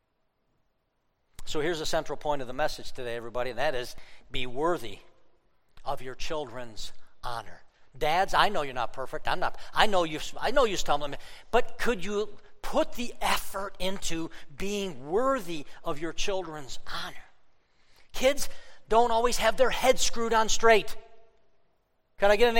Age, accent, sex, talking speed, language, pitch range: 50-69, American, male, 160 wpm, English, 155-230 Hz